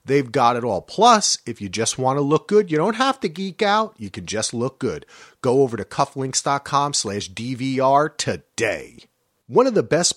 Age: 40-59